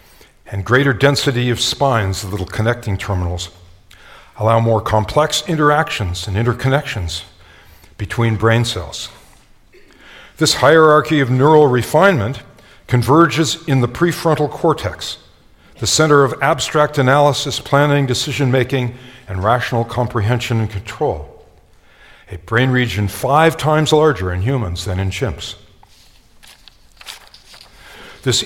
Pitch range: 105-150 Hz